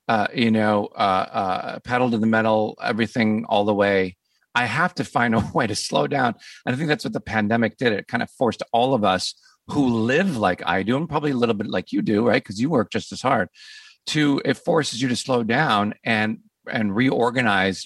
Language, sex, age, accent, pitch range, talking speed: English, male, 50-69, American, 100-120 Hz, 225 wpm